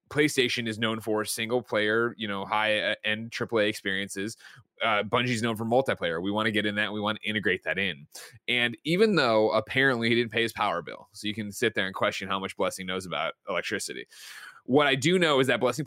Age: 20-39